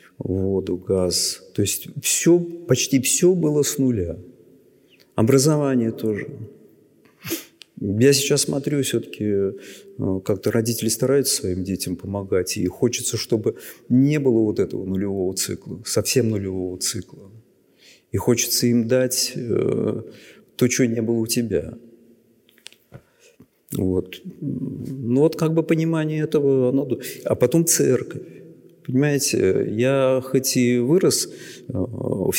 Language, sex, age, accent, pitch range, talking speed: Russian, male, 50-69, native, 95-135 Hz, 105 wpm